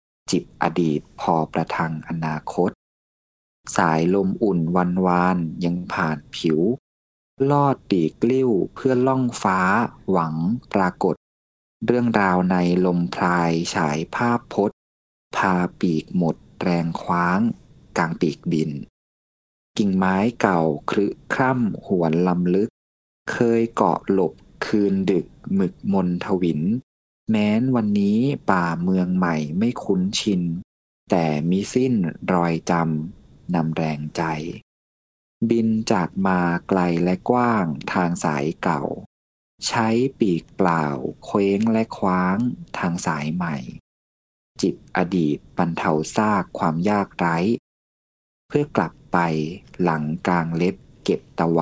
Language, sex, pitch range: Thai, male, 80-105 Hz